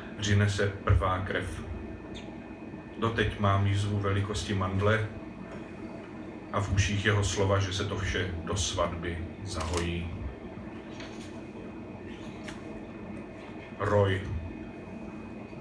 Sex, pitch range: male, 100-110 Hz